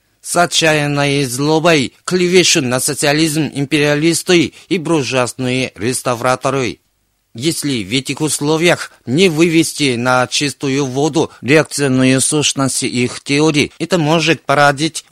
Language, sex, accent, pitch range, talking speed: Russian, male, native, 130-160 Hz, 105 wpm